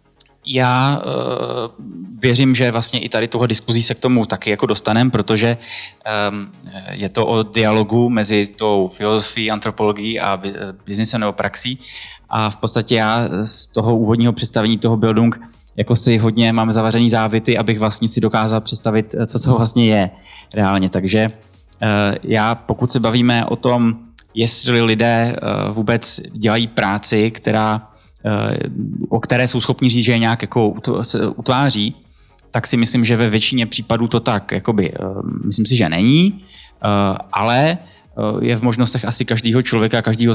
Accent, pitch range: native, 105-120 Hz